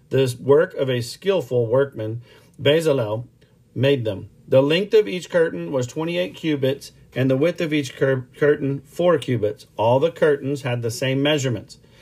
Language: English